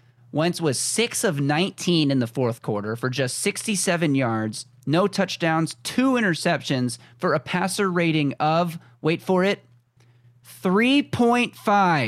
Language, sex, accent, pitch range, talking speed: English, male, American, 120-170 Hz, 130 wpm